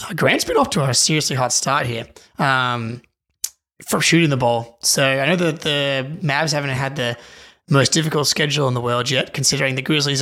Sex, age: male, 20-39